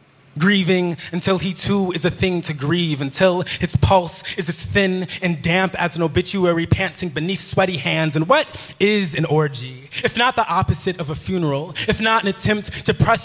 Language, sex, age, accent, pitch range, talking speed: English, male, 20-39, American, 150-190 Hz, 190 wpm